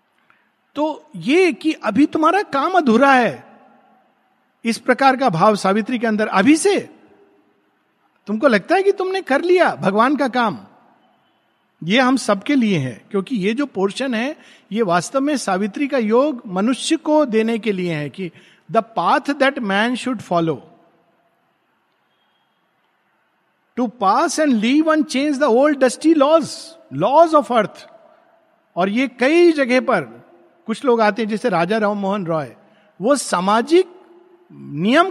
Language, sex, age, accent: Hindi, male, 50-69, native